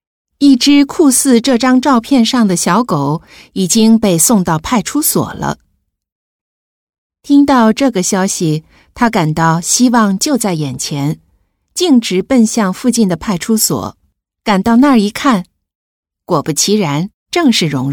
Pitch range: 160-245 Hz